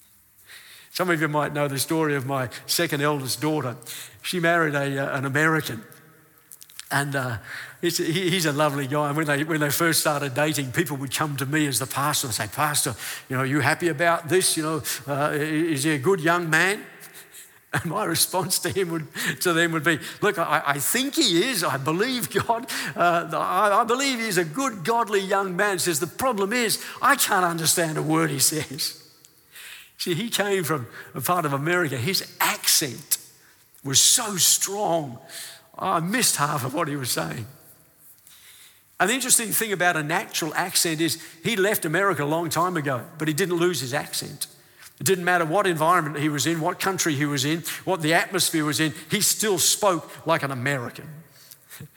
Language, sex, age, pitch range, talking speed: English, male, 60-79, 145-180 Hz, 190 wpm